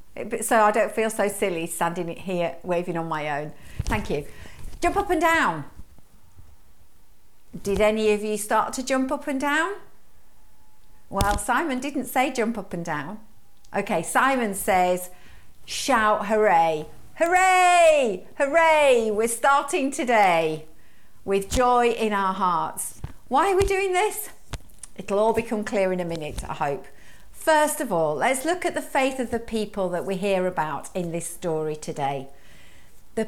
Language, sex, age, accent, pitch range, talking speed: English, female, 50-69, British, 170-260 Hz, 155 wpm